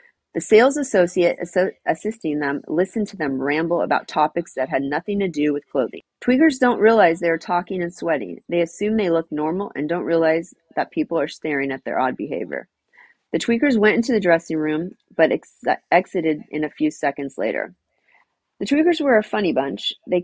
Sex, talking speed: female, 185 wpm